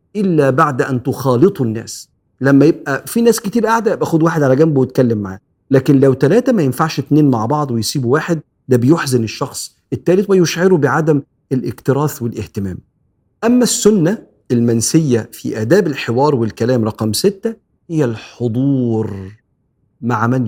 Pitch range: 120-160 Hz